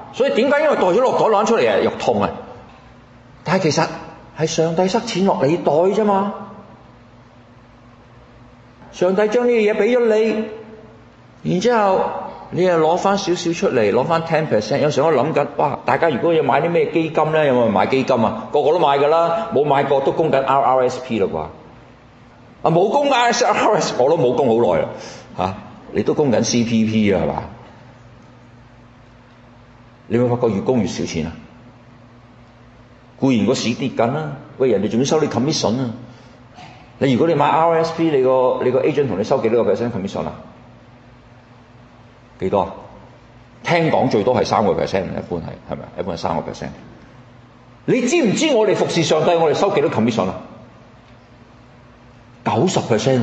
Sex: male